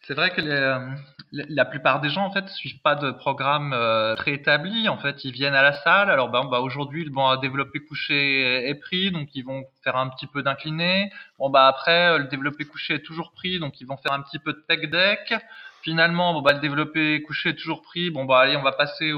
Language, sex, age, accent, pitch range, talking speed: French, male, 20-39, French, 140-175 Hz, 235 wpm